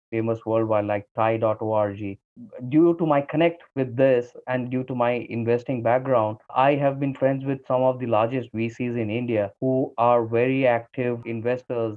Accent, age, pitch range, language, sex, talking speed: Indian, 20-39, 115-140 Hz, English, male, 165 wpm